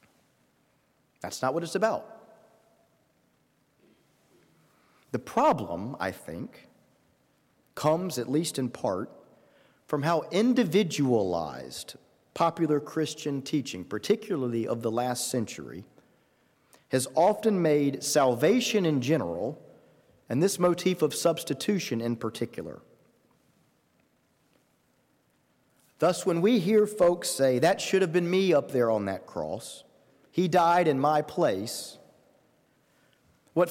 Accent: American